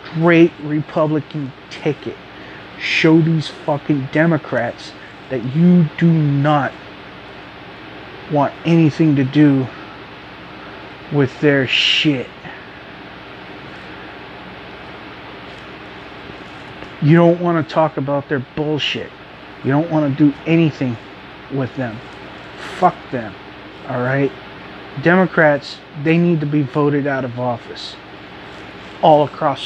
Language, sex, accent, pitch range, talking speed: English, male, American, 135-165 Hz, 95 wpm